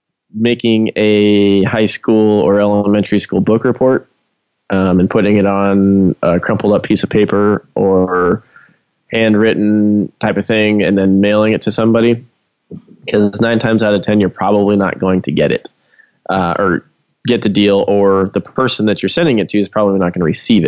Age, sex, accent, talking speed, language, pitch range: 20-39, male, American, 185 wpm, English, 95-115 Hz